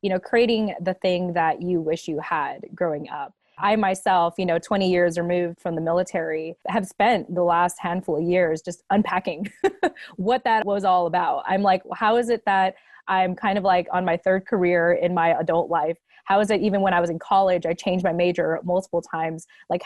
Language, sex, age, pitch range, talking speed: English, female, 20-39, 175-205 Hz, 210 wpm